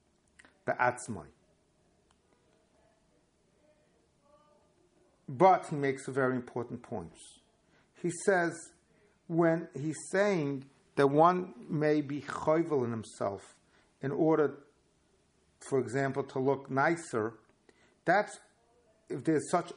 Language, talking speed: English, 95 wpm